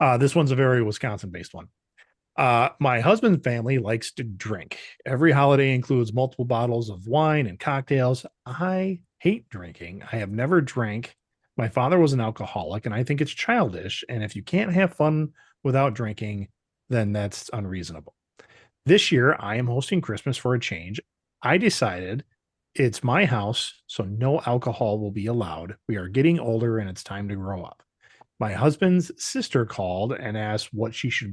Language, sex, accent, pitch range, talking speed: English, male, American, 105-140 Hz, 170 wpm